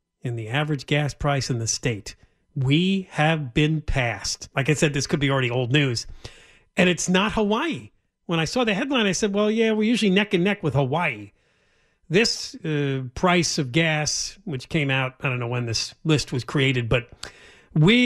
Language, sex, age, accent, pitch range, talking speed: English, male, 40-59, American, 140-225 Hz, 195 wpm